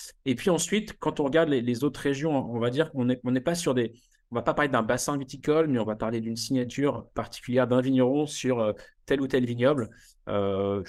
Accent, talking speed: French, 225 wpm